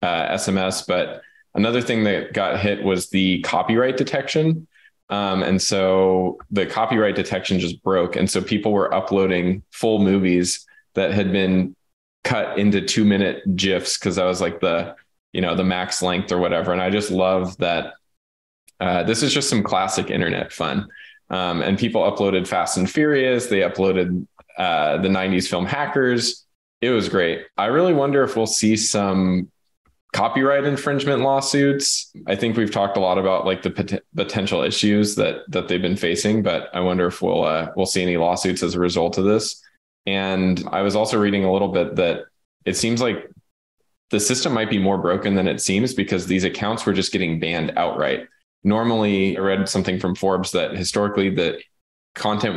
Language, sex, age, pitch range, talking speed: English, male, 20-39, 95-110 Hz, 180 wpm